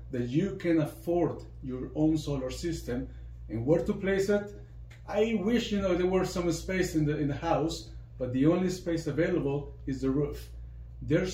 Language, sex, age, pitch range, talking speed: English, male, 40-59, 130-170 Hz, 185 wpm